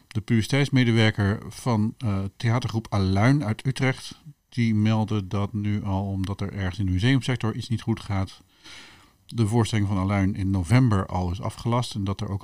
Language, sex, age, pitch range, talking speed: Dutch, male, 50-69, 95-120 Hz, 175 wpm